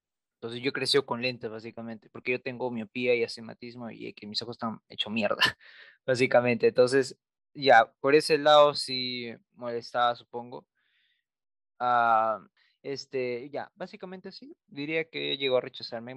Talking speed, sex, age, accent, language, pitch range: 145 wpm, male, 20-39, Mexican, Spanish, 115-140 Hz